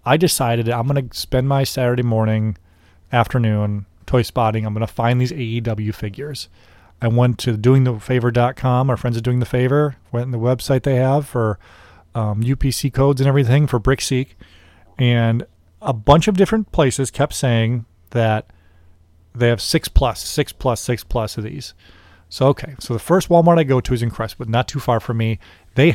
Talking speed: 185 wpm